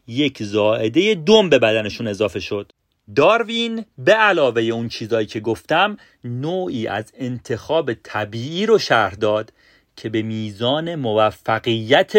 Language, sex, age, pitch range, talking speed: Persian, male, 40-59, 110-150 Hz, 125 wpm